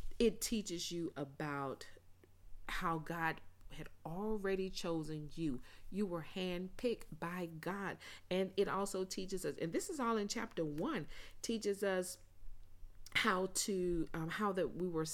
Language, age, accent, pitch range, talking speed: English, 40-59, American, 160-215 Hz, 145 wpm